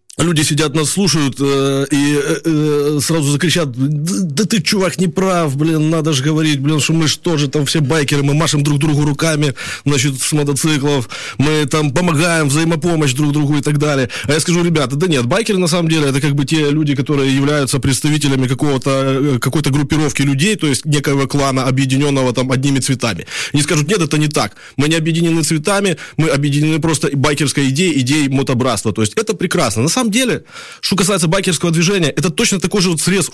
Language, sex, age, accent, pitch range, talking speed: Ukrainian, male, 20-39, native, 140-185 Hz, 195 wpm